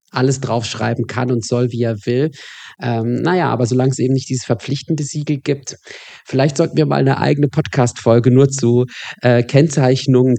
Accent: German